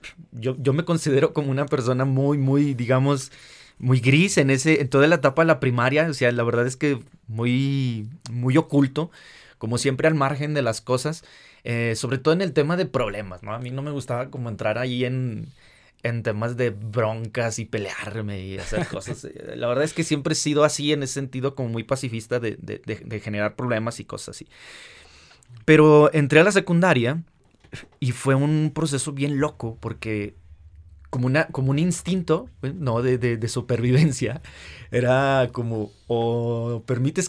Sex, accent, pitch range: male, Mexican, 120-150 Hz